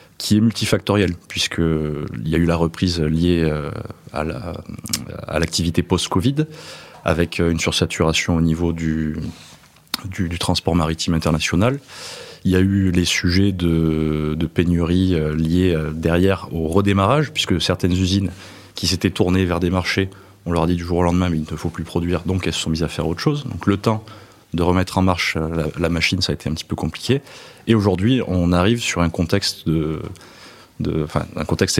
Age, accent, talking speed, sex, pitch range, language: 20-39, French, 185 wpm, male, 85-100 Hz, French